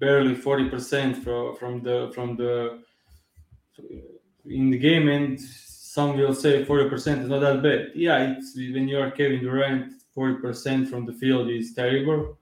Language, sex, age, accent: English, male, 20-39, Serbian